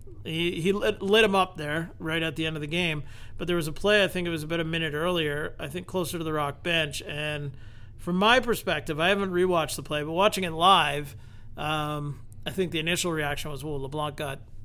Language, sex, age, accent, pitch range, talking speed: English, male, 40-59, American, 135-170 Hz, 225 wpm